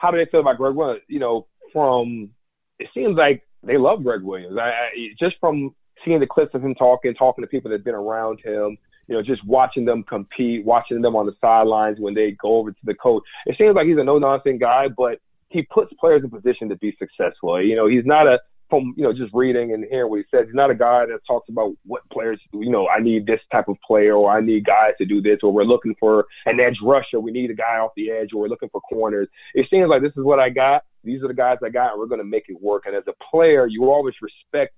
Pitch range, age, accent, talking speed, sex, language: 110-150 Hz, 30-49, American, 275 wpm, male, English